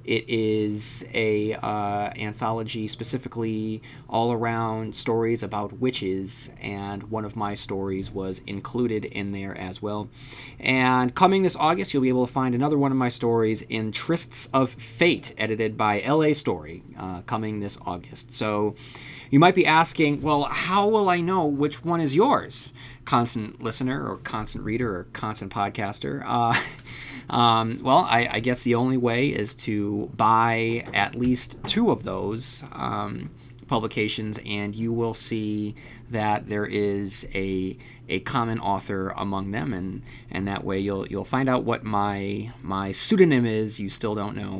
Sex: male